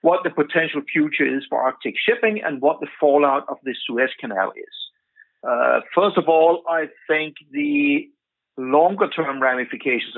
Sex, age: male, 60-79